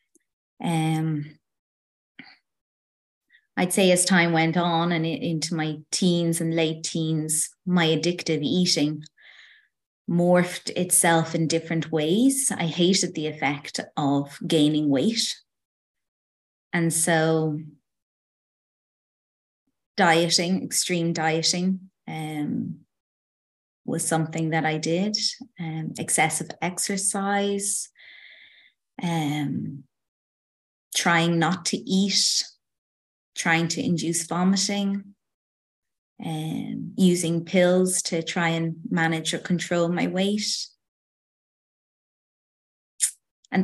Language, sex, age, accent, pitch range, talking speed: English, female, 30-49, Irish, 155-180 Hz, 85 wpm